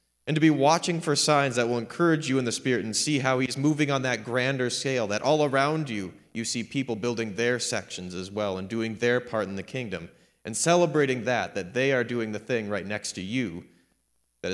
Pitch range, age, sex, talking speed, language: 115-145 Hz, 30-49, male, 225 wpm, English